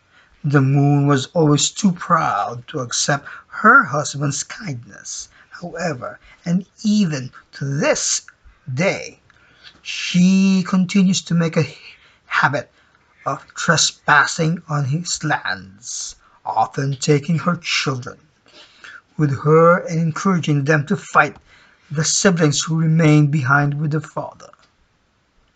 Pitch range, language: 140-170 Hz, English